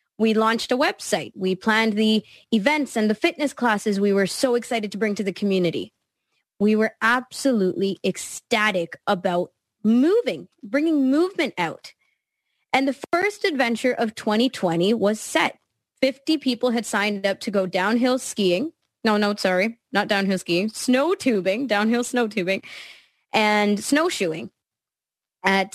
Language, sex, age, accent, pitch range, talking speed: English, female, 20-39, American, 200-270 Hz, 140 wpm